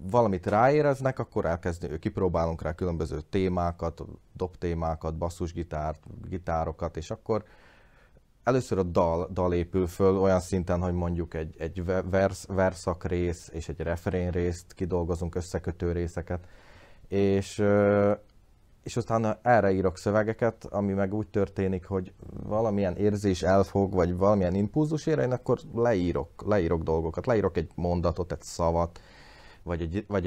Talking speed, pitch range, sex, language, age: 130 wpm, 85-105 Hz, male, Hungarian, 30-49